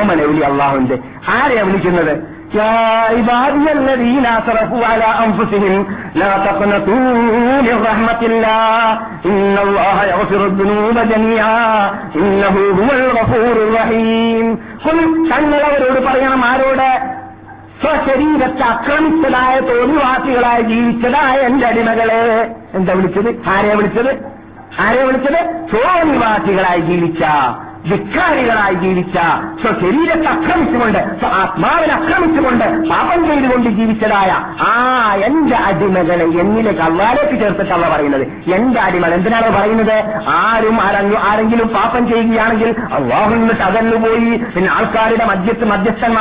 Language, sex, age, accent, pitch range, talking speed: Malayalam, male, 50-69, native, 205-250 Hz, 60 wpm